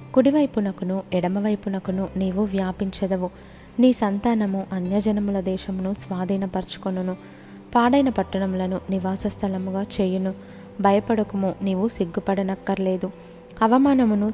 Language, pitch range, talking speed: Telugu, 190-215 Hz, 70 wpm